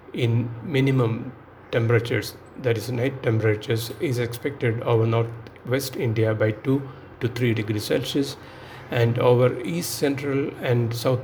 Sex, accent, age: male, Indian, 60-79